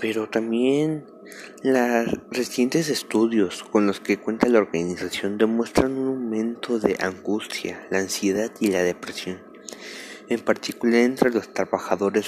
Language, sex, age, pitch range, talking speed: Spanish, male, 20-39, 105-120 Hz, 125 wpm